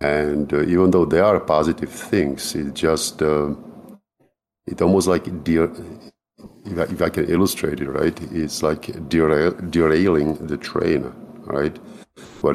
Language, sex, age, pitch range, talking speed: English, male, 50-69, 70-80 Hz, 145 wpm